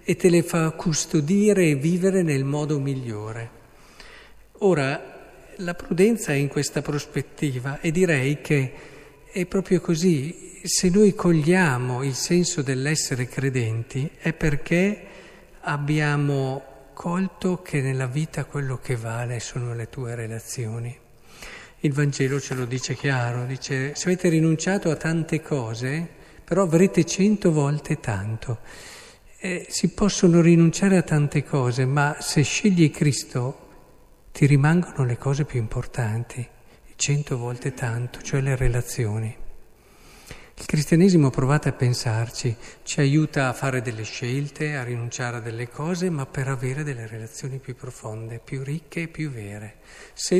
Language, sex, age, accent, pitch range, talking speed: Italian, male, 50-69, native, 125-165 Hz, 135 wpm